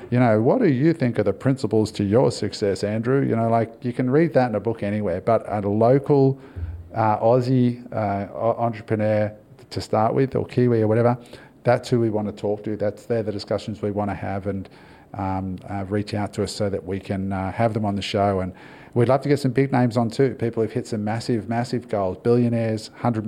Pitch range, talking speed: 105-125 Hz, 230 wpm